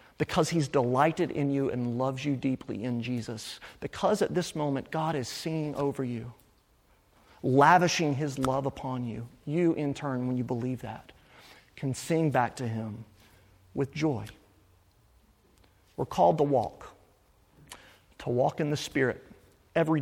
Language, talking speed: English, 145 wpm